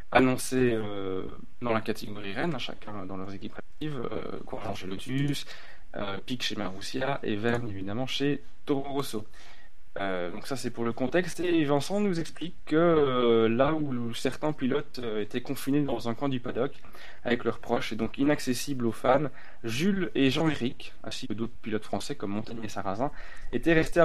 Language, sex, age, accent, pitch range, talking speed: French, male, 20-39, French, 110-140 Hz, 180 wpm